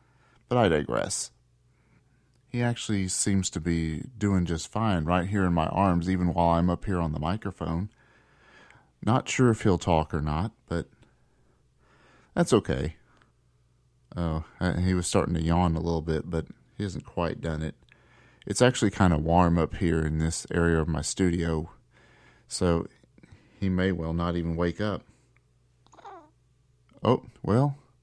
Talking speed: 155 wpm